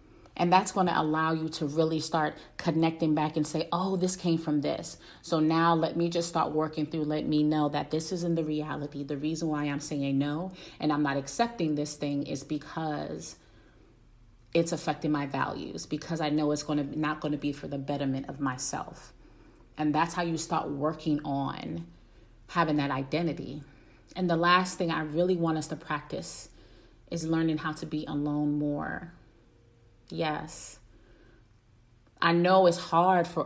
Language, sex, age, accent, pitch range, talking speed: English, female, 30-49, American, 145-165 Hz, 180 wpm